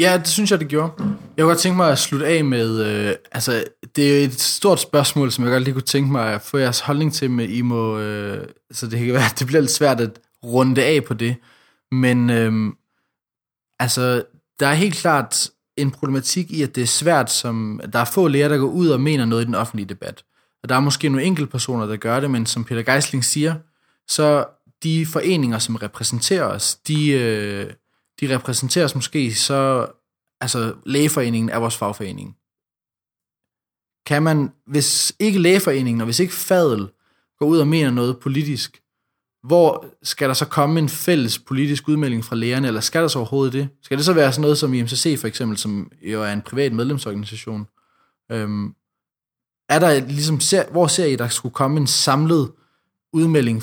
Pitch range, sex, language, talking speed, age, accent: 115-150 Hz, male, Danish, 200 wpm, 20-39, native